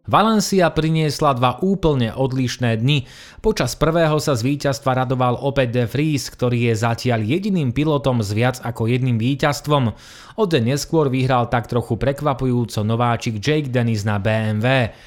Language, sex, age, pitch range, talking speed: Slovak, male, 30-49, 115-145 Hz, 140 wpm